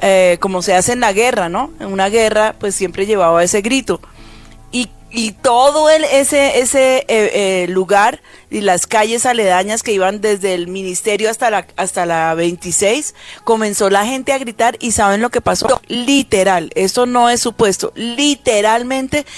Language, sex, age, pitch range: Spanish, female, 30-49, 185-235 Hz